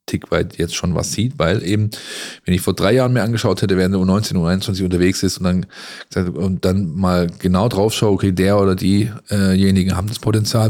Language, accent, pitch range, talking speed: German, German, 95-115 Hz, 210 wpm